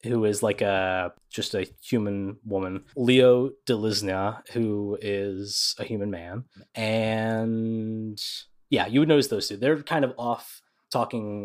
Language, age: English, 20-39